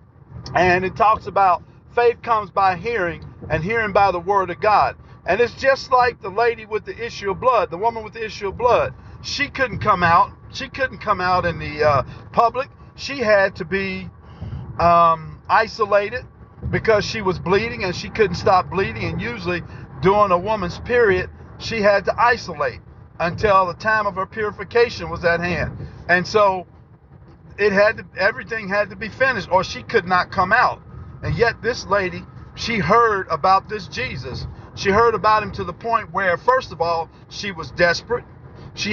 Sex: male